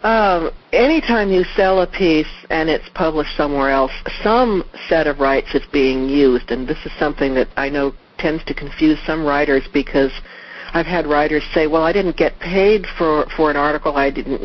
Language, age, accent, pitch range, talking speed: English, 60-79, American, 140-185 Hz, 190 wpm